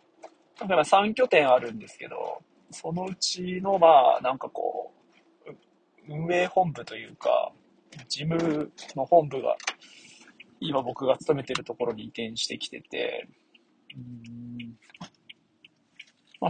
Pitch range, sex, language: 140-230 Hz, male, Japanese